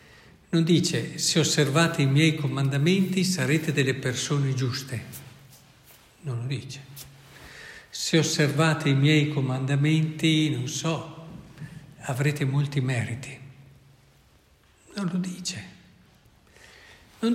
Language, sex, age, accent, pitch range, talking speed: Italian, male, 60-79, native, 130-165 Hz, 95 wpm